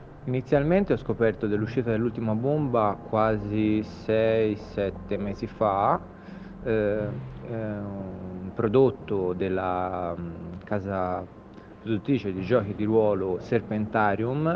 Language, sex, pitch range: Italian, male, 95-115 Hz